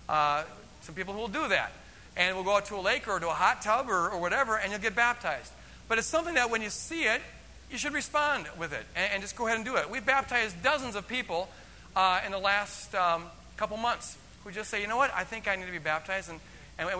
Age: 40-59